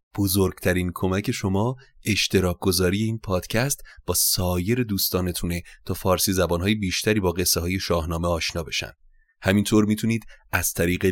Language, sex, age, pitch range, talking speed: Persian, male, 30-49, 85-110 Hz, 125 wpm